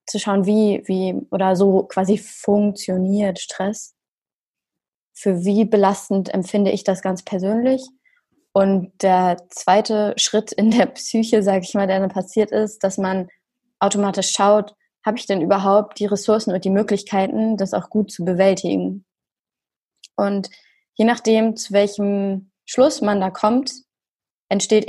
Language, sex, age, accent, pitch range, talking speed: German, female, 20-39, German, 190-215 Hz, 140 wpm